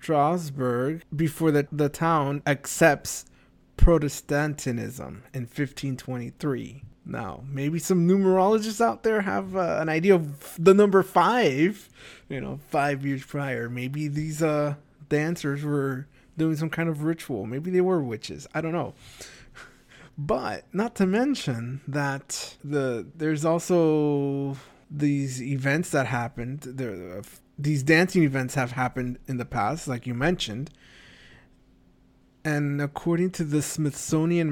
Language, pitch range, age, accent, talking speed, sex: English, 130-155 Hz, 20-39, American, 130 wpm, male